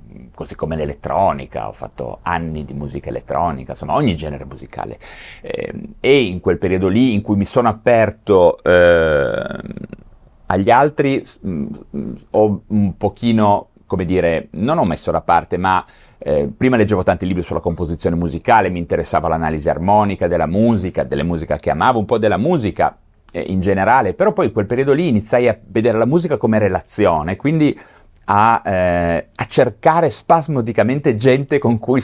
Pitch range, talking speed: 80-115 Hz, 155 wpm